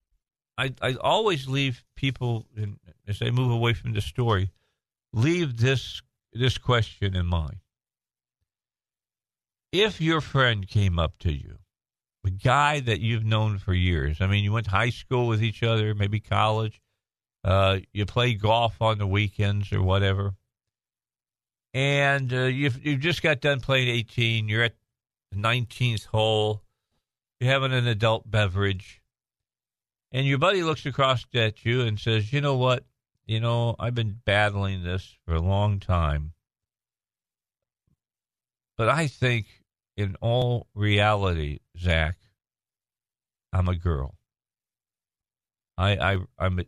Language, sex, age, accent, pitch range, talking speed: English, male, 50-69, American, 95-125 Hz, 135 wpm